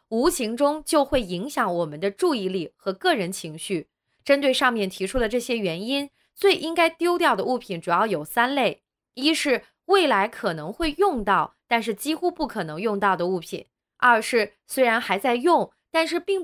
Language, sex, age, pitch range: Chinese, female, 20-39, 200-300 Hz